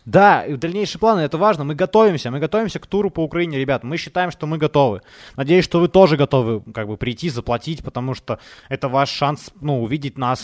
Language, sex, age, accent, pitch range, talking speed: Ukrainian, male, 20-39, native, 120-155 Hz, 205 wpm